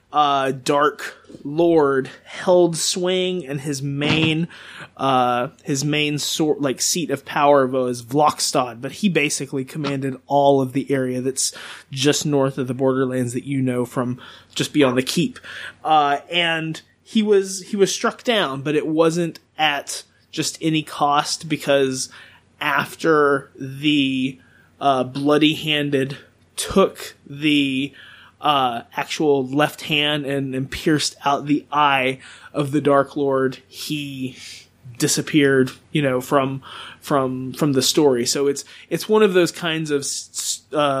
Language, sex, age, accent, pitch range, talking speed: English, male, 20-39, American, 130-150 Hz, 140 wpm